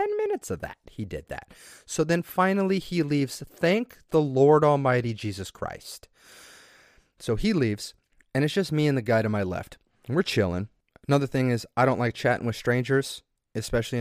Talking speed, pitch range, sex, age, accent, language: 175 wpm, 115-160 Hz, male, 30-49, American, English